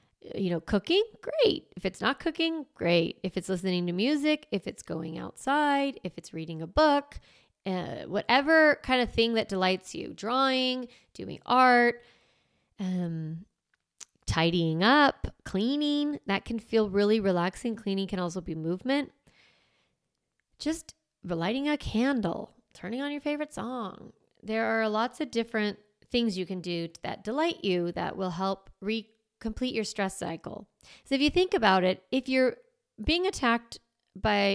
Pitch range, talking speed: 185-260 Hz, 155 wpm